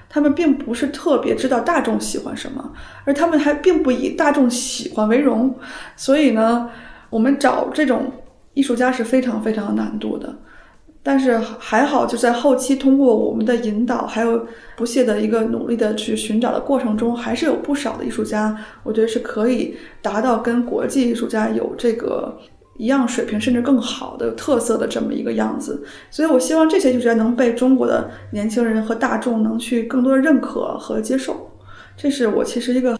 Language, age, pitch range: Chinese, 20-39, 225-280 Hz